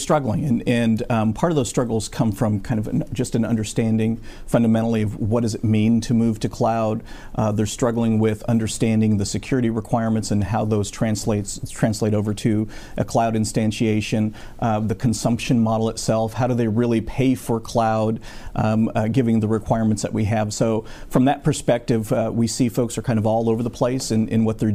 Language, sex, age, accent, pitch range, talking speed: English, male, 40-59, American, 110-120 Hz, 200 wpm